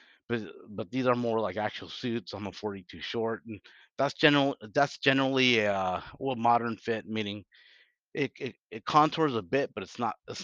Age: 30-49